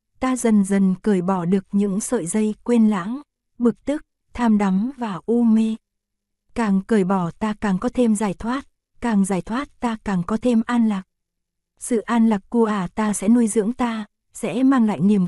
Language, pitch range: Korean, 200-235 Hz